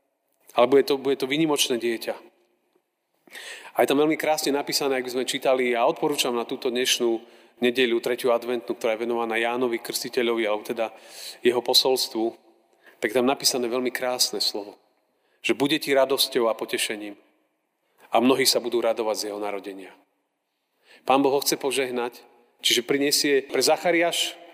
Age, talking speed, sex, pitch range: 40-59, 155 wpm, male, 120-140 Hz